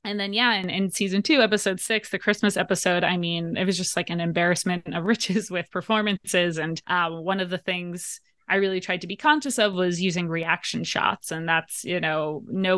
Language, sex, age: English, female, 20-39